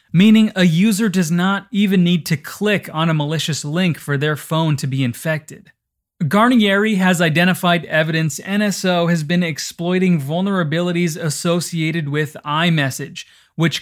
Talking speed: 140 wpm